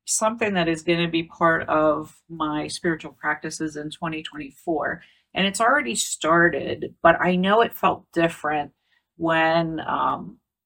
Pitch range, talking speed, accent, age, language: 155-180 Hz, 140 wpm, American, 40-59, English